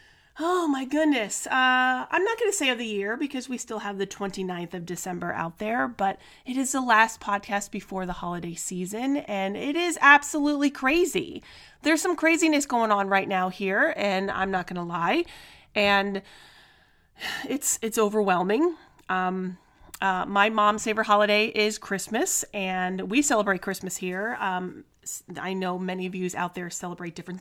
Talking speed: 170 wpm